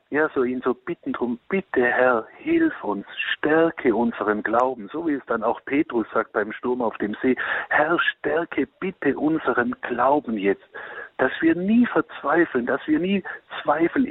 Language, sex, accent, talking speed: German, male, German, 165 wpm